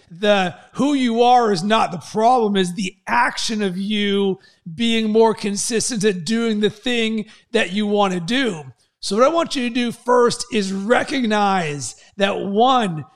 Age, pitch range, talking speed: 40-59, 195-230 Hz, 170 wpm